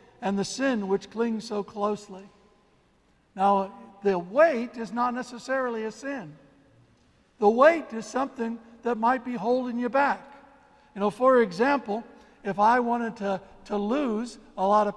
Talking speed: 150 wpm